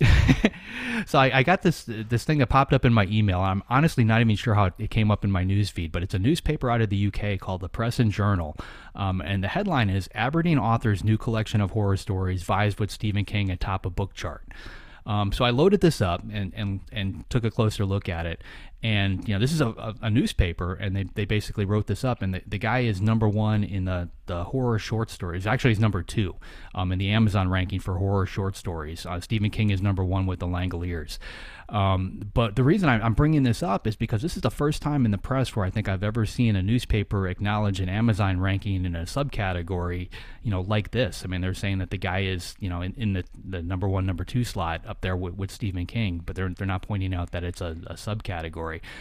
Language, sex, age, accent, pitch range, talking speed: English, male, 30-49, American, 95-115 Hz, 240 wpm